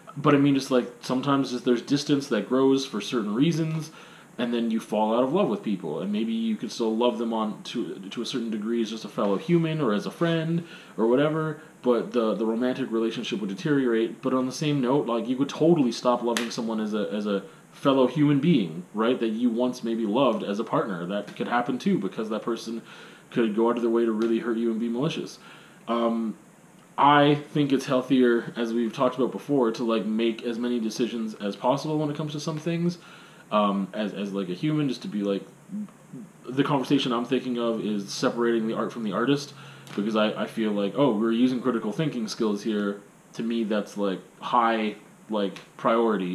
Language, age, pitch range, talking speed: English, 20-39, 110-145 Hz, 215 wpm